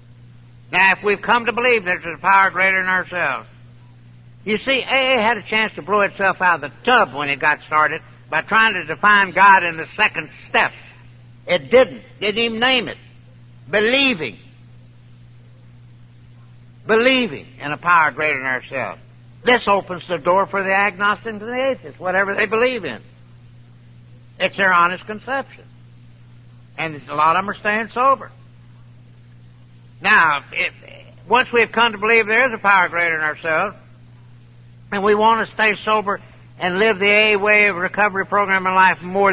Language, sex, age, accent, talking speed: English, male, 60-79, American, 165 wpm